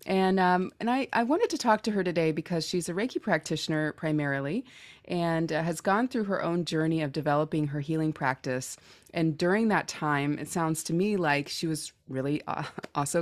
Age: 20-39